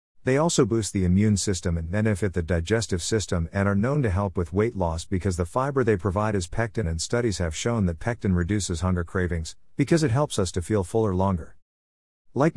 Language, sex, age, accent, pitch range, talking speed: English, male, 50-69, American, 90-115 Hz, 210 wpm